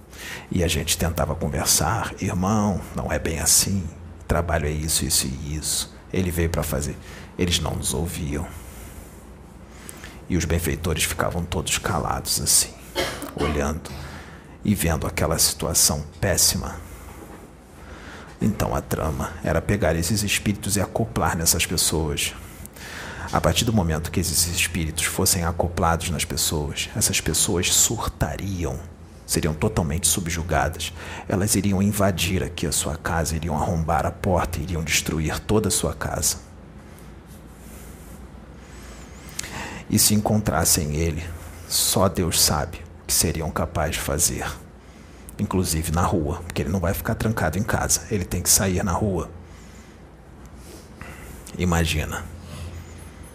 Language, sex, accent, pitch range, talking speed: English, male, Brazilian, 75-95 Hz, 125 wpm